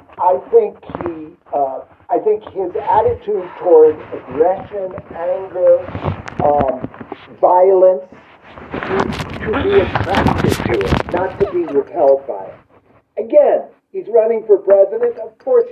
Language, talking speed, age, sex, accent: English, 120 wpm, 50-69, male, American